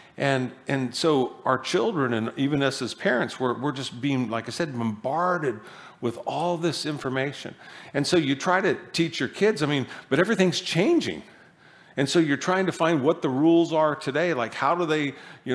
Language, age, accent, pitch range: English, 50-69, American, 130-170 Hz